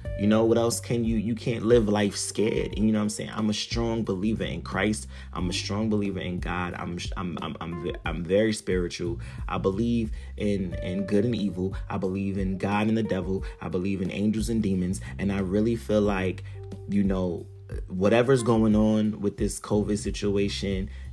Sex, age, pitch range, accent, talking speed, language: male, 30-49, 90-105 Hz, American, 200 wpm, English